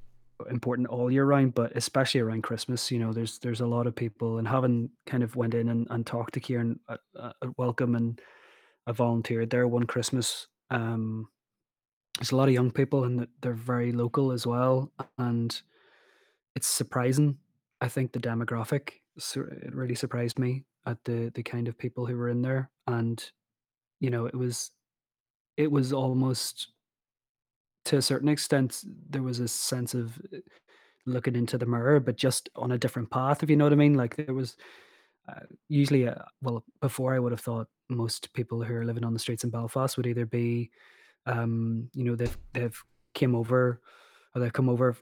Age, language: 20-39, English